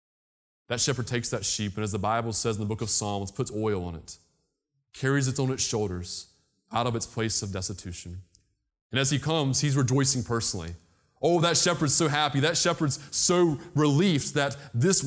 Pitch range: 100-150 Hz